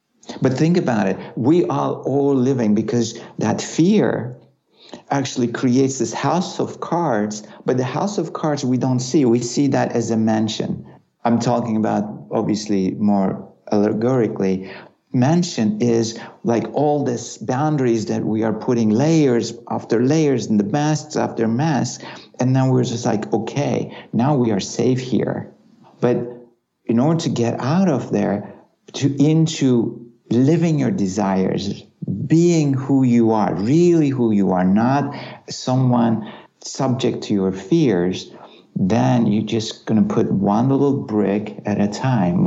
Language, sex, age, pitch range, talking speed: English, male, 60-79, 110-130 Hz, 150 wpm